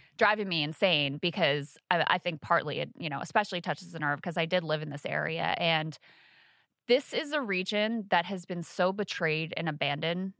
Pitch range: 160-190 Hz